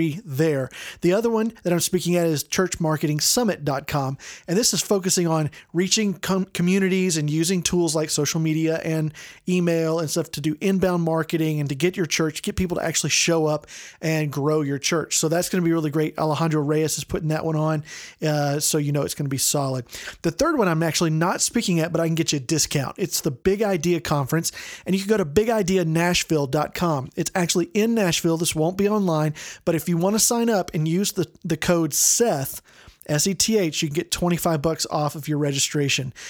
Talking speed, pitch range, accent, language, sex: 210 wpm, 150-185 Hz, American, English, male